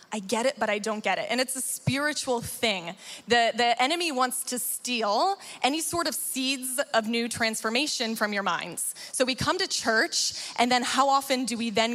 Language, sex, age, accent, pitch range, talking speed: English, female, 20-39, American, 210-255 Hz, 205 wpm